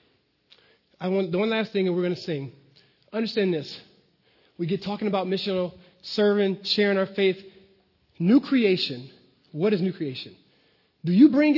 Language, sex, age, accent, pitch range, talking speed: English, male, 30-49, American, 180-245 Hz, 160 wpm